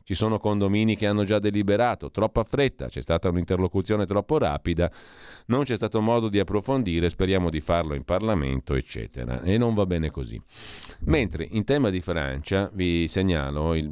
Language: Italian